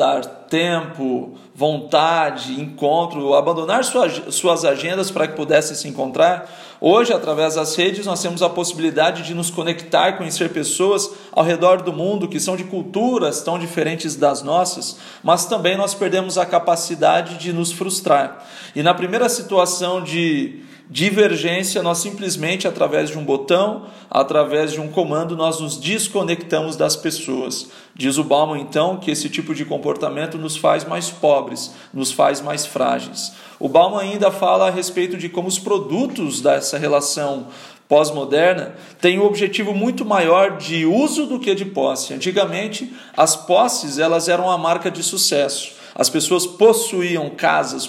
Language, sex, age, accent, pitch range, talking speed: Portuguese, male, 40-59, Brazilian, 155-190 Hz, 155 wpm